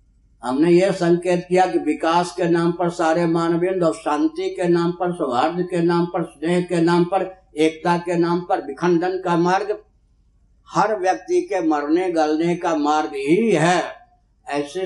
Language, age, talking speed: Hindi, 60-79, 165 wpm